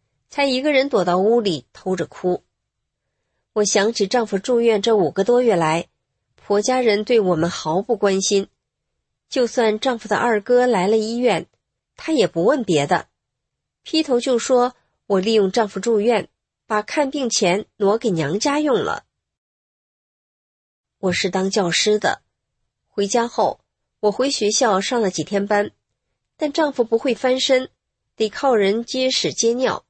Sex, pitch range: female, 185-250 Hz